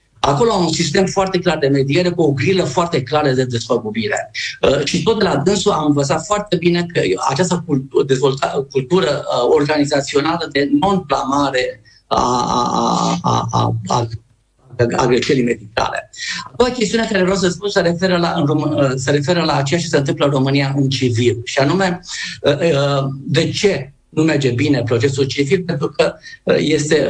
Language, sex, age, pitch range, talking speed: Romanian, male, 50-69, 135-175 Hz, 155 wpm